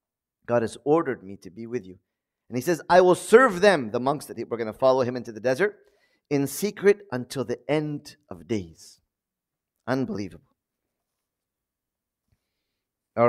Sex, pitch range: male, 130-220 Hz